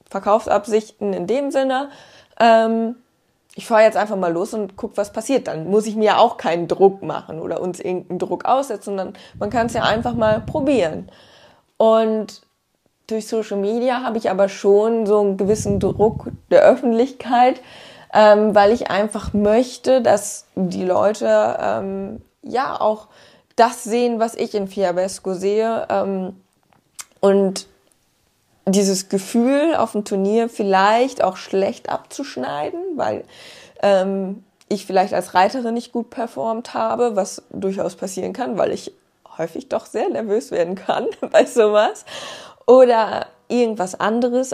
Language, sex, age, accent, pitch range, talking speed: German, female, 20-39, German, 195-240 Hz, 145 wpm